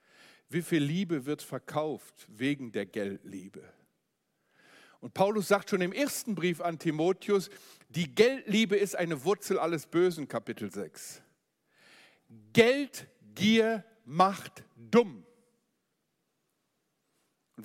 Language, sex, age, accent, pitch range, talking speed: German, male, 50-69, German, 145-220 Hz, 100 wpm